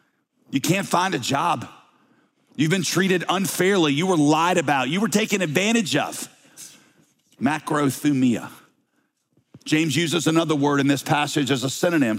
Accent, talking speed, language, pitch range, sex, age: American, 145 wpm, English, 135-190 Hz, male, 40-59